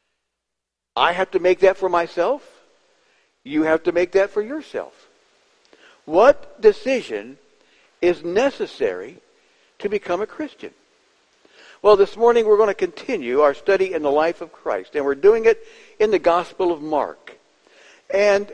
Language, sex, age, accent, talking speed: English, male, 60-79, American, 150 wpm